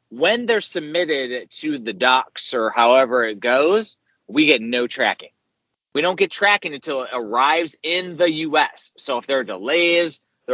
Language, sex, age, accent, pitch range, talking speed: English, male, 30-49, American, 120-165 Hz, 170 wpm